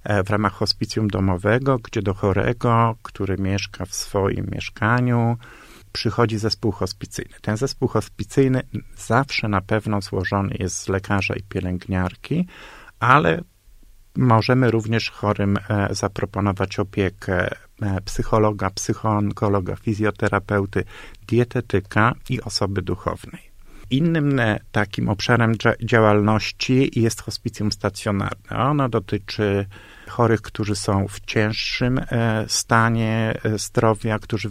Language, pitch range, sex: Polish, 100-115 Hz, male